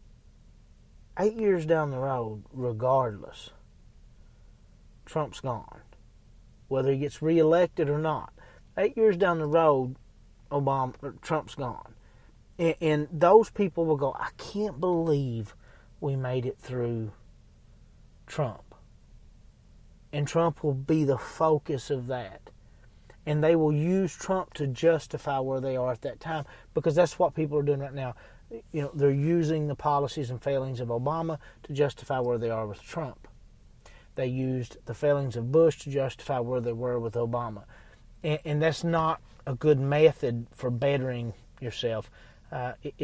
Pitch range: 125-155 Hz